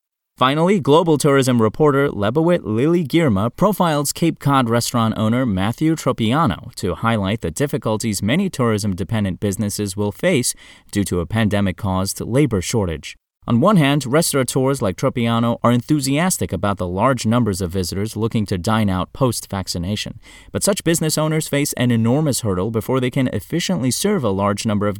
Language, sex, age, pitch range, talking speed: English, male, 30-49, 100-135 Hz, 160 wpm